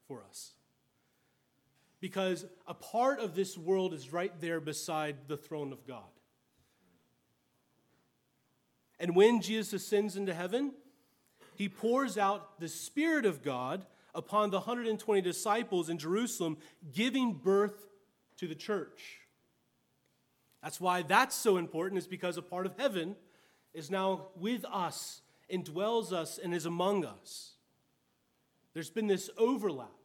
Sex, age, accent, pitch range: male, 30-49, American, 155-200 Hz